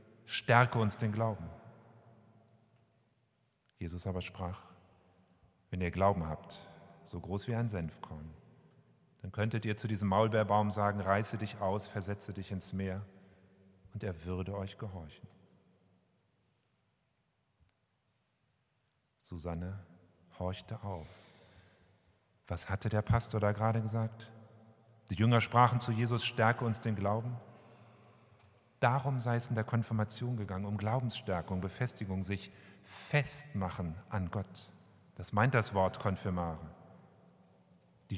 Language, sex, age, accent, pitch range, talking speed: German, male, 40-59, German, 95-115 Hz, 115 wpm